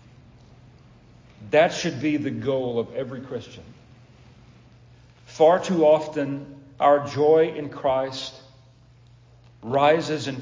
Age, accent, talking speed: 40-59, American, 100 wpm